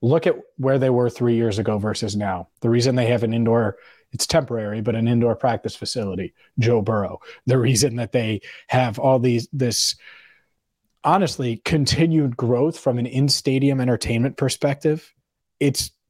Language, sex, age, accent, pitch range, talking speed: English, male, 30-49, American, 110-140 Hz, 155 wpm